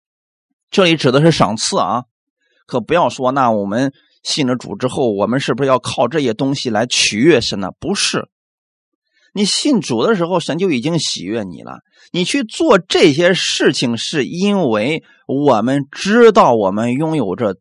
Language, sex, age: Chinese, male, 30-49